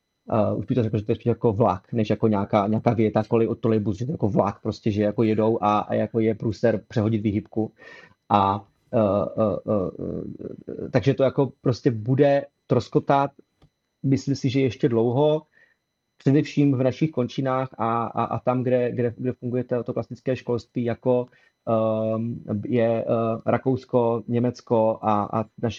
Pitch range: 110-125 Hz